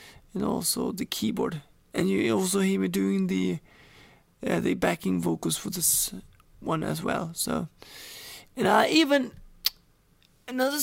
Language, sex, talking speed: English, male, 140 wpm